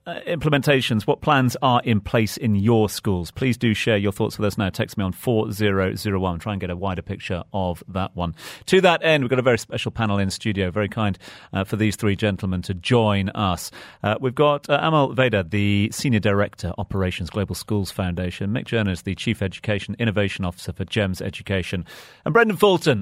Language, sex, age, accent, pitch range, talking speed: English, male, 40-59, British, 100-130 Hz, 205 wpm